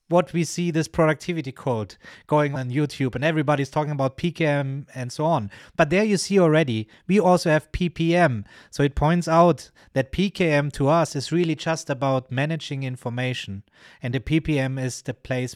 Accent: German